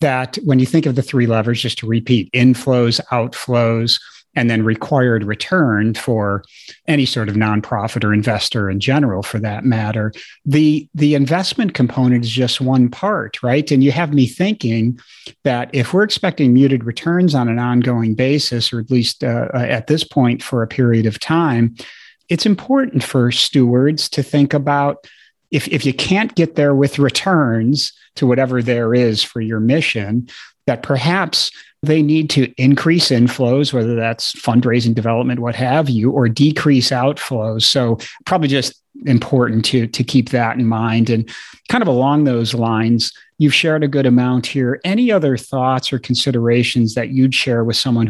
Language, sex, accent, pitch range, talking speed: English, male, American, 115-140 Hz, 170 wpm